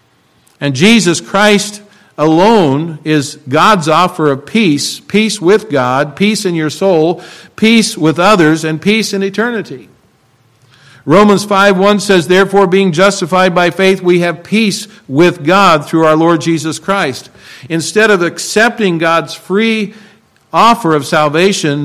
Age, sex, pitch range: 50-69, male, 150-195 Hz